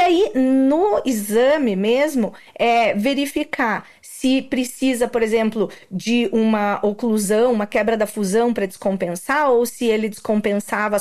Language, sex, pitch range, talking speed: Portuguese, female, 210-265 Hz, 130 wpm